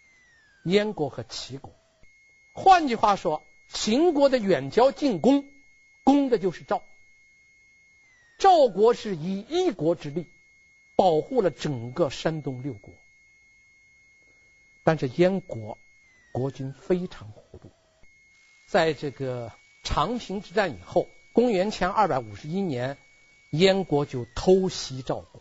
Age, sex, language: 50-69, male, Chinese